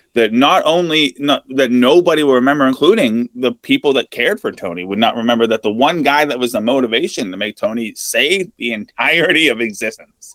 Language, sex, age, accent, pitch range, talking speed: English, male, 20-39, American, 110-155 Hz, 195 wpm